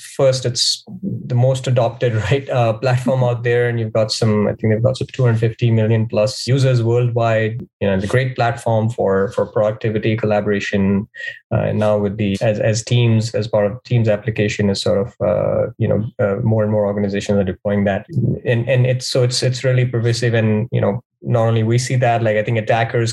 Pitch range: 105-120 Hz